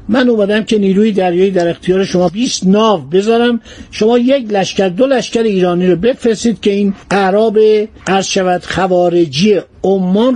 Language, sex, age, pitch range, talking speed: Persian, male, 50-69, 185-245 Hz, 145 wpm